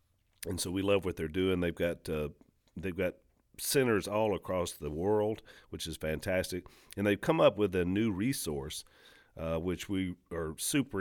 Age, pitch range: 40-59, 80-100 Hz